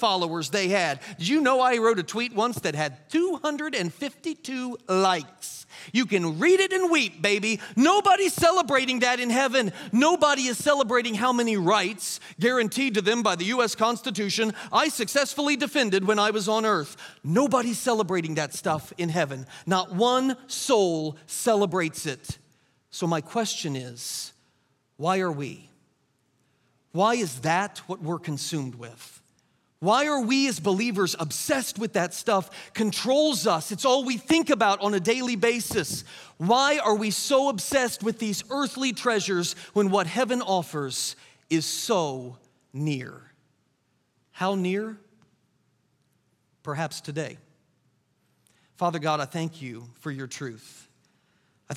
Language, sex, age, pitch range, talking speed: English, male, 40-59, 160-245 Hz, 140 wpm